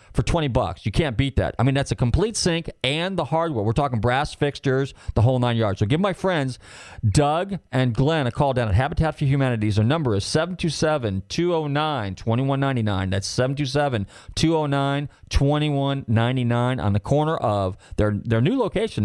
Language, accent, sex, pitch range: English, American, male, 105-145 Hz